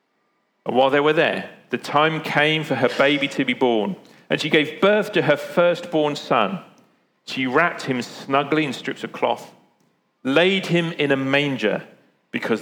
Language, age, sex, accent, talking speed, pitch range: English, 40-59, male, British, 170 wpm, 130-165 Hz